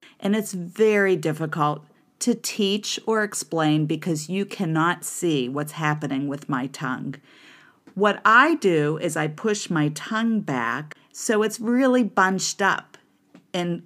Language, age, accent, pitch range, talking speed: English, 40-59, American, 150-200 Hz, 140 wpm